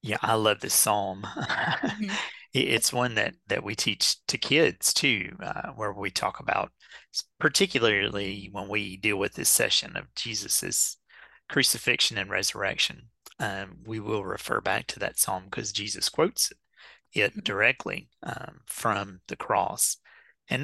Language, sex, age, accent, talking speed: English, male, 30-49, American, 140 wpm